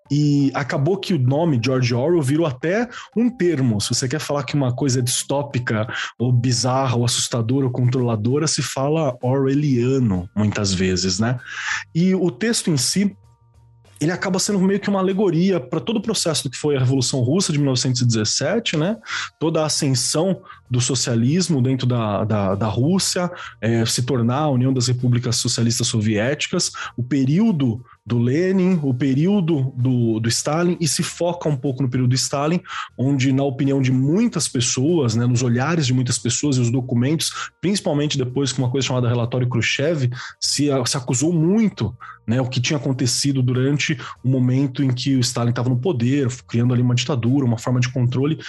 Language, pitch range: Portuguese, 125-155 Hz